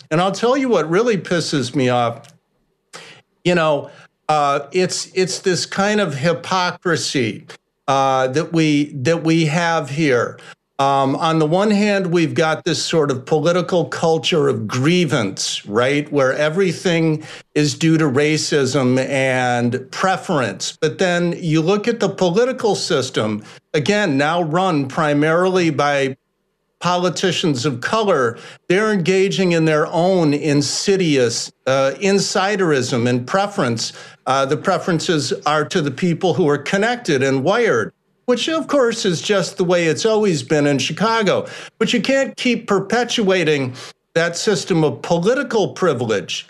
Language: English